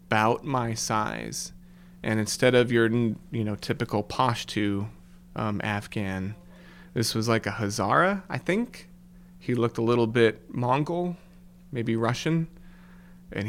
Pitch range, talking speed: 110-180 Hz, 130 wpm